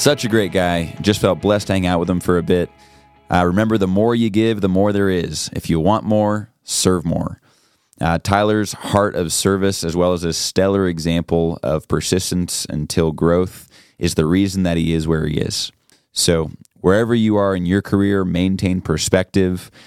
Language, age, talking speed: English, 20-39, 195 wpm